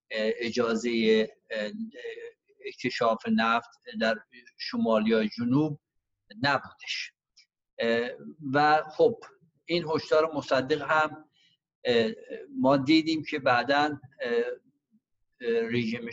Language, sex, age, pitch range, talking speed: Persian, male, 50-69, 125-185 Hz, 65 wpm